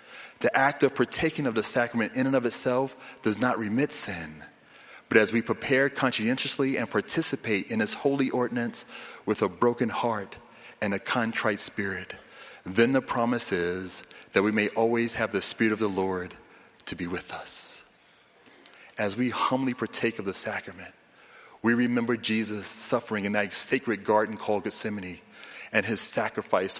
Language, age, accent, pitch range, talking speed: English, 30-49, American, 105-125 Hz, 160 wpm